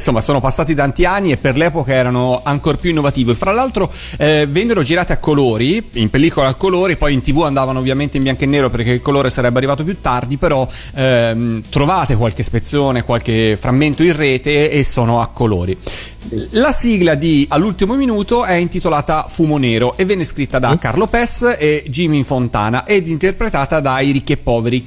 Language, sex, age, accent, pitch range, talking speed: Italian, male, 30-49, native, 125-170 Hz, 180 wpm